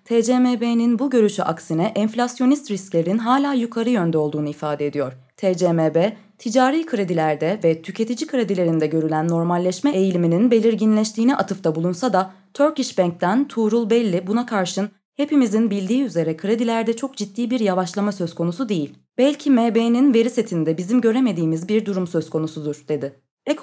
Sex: female